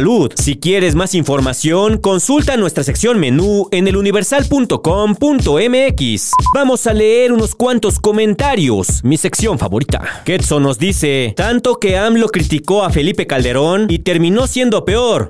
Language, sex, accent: Spanish, male, Mexican